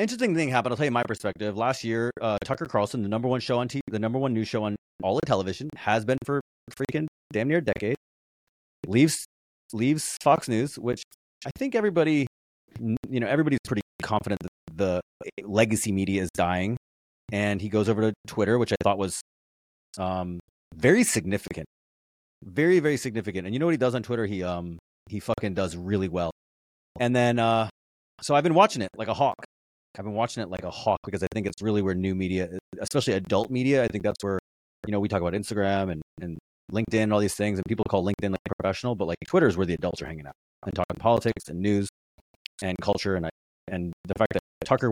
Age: 30-49